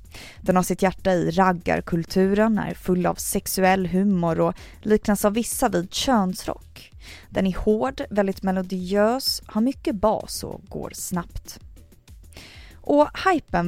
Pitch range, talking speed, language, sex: 175-235 Hz, 130 wpm, Swedish, female